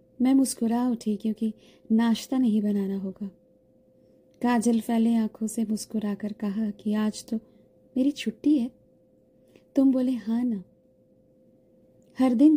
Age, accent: 20-39, native